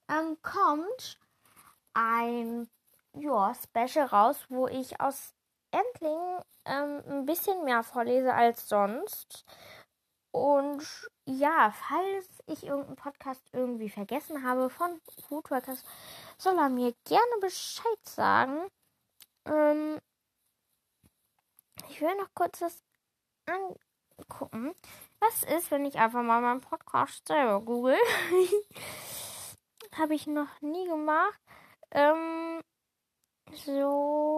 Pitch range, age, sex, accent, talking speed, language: 245-320 Hz, 20-39, female, German, 105 wpm, German